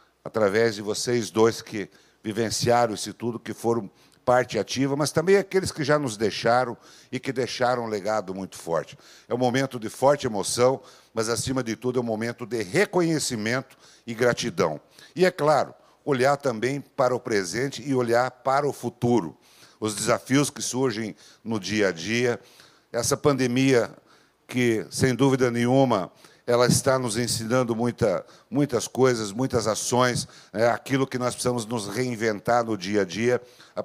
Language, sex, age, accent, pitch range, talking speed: Portuguese, male, 60-79, Brazilian, 115-135 Hz, 160 wpm